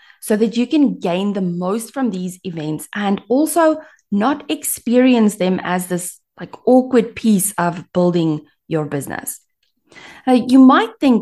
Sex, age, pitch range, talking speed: female, 30-49, 175-250 Hz, 150 wpm